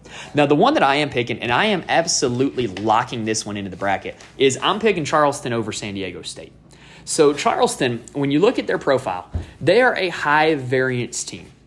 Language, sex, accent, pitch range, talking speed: English, male, American, 115-155 Hz, 195 wpm